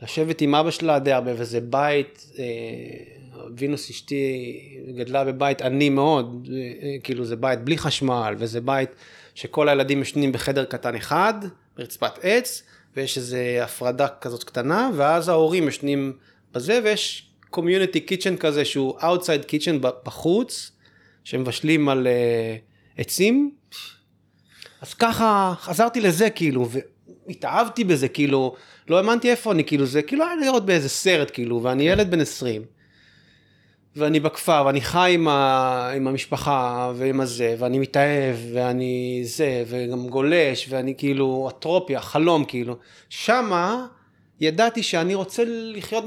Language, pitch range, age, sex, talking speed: Hebrew, 125-175 Hz, 30-49, male, 135 wpm